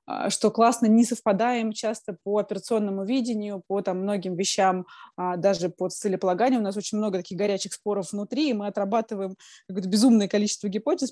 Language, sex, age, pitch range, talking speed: Russian, female, 20-39, 180-225 Hz, 155 wpm